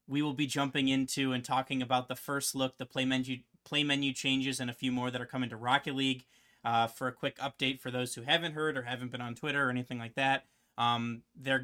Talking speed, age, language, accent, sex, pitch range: 255 wpm, 30-49, English, American, male, 125-140 Hz